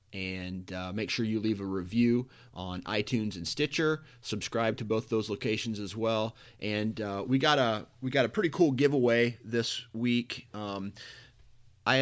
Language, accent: English, American